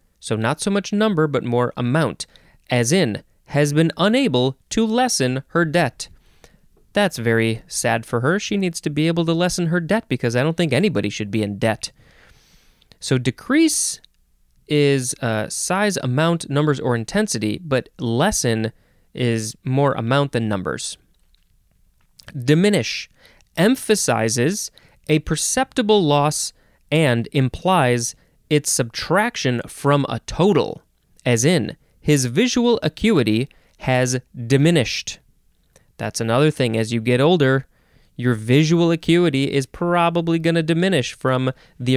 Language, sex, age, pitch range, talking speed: English, male, 30-49, 120-170 Hz, 130 wpm